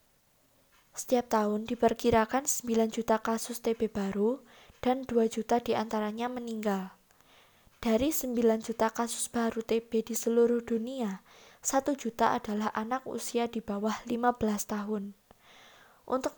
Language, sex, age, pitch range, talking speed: Indonesian, female, 20-39, 220-245 Hz, 115 wpm